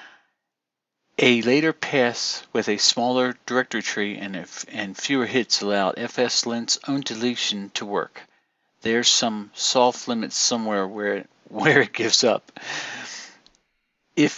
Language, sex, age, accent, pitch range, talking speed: English, male, 50-69, American, 110-135 Hz, 130 wpm